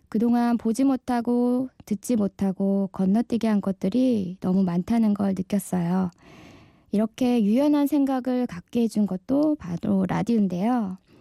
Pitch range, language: 195-255 Hz, Korean